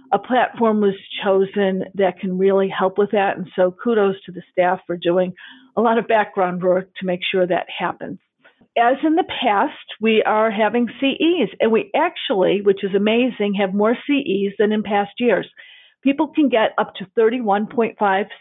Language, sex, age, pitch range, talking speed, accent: English, female, 50-69, 190-230 Hz, 180 wpm, American